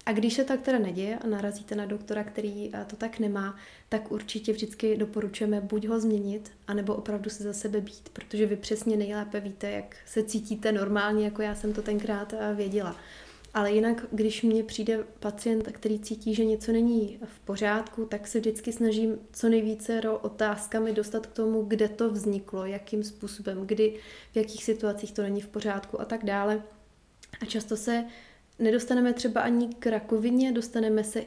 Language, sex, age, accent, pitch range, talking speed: Czech, female, 20-39, native, 205-220 Hz, 175 wpm